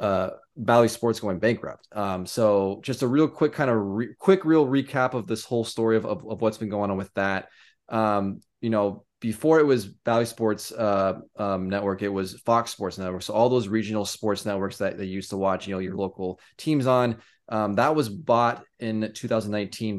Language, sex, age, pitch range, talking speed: English, male, 20-39, 100-120 Hz, 205 wpm